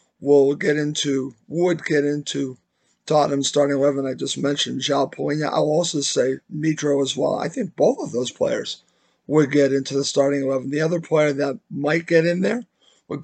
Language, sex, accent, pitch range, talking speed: English, male, American, 140-160 Hz, 185 wpm